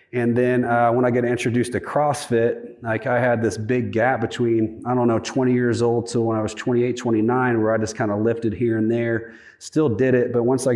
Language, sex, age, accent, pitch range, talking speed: English, male, 30-49, American, 115-125 Hz, 240 wpm